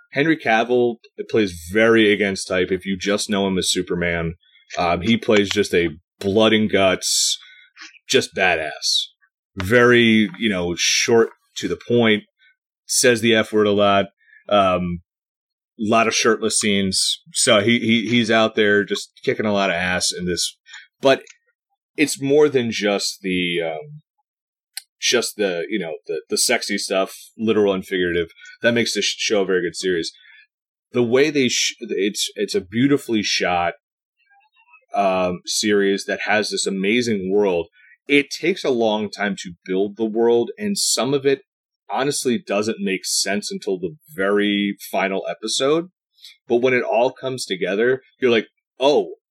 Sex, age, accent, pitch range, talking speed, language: male, 30-49, American, 100-160 Hz, 155 wpm, English